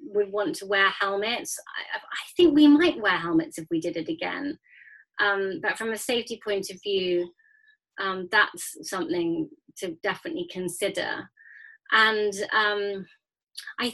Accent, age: British, 30-49